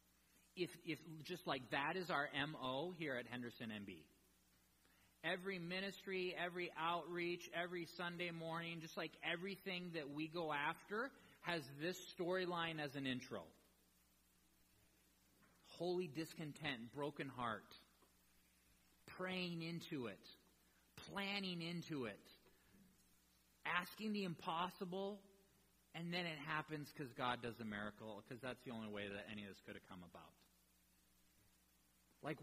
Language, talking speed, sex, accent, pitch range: English, 125 wpm, male, American, 100-165 Hz